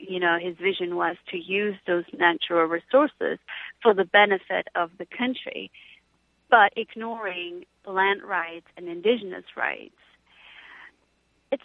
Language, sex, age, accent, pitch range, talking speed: English, female, 30-49, American, 180-220 Hz, 125 wpm